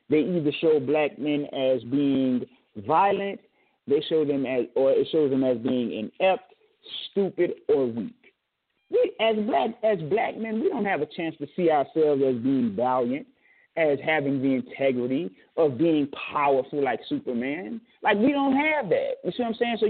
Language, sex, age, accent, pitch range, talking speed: English, male, 30-49, American, 150-225 Hz, 180 wpm